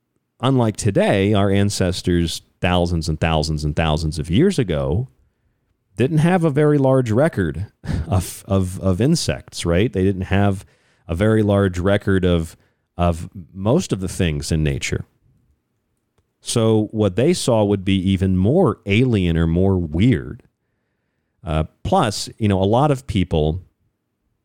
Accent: American